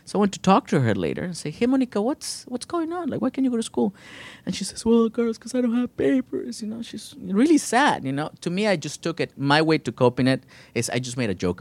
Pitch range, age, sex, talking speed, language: 120-190 Hz, 30-49, male, 295 wpm, English